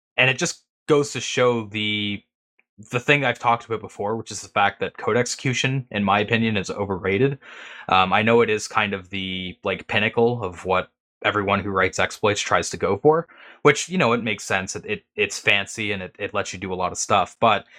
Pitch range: 100-125 Hz